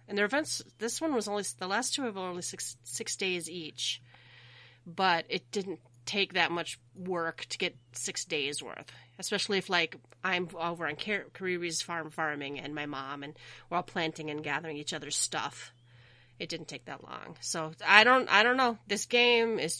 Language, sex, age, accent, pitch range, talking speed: English, female, 30-49, American, 145-210 Hz, 200 wpm